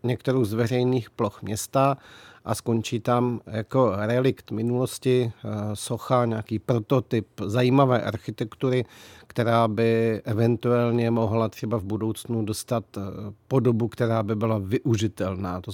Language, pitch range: Czech, 110-125 Hz